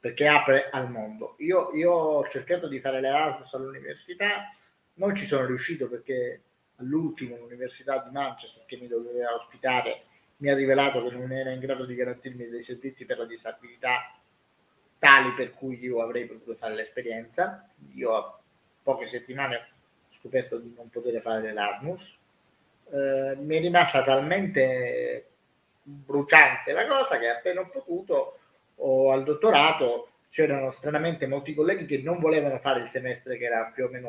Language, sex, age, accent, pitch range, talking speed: Italian, male, 30-49, native, 125-180 Hz, 155 wpm